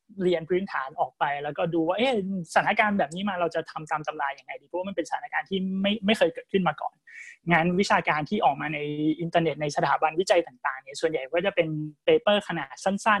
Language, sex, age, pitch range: Thai, male, 20-39, 160-200 Hz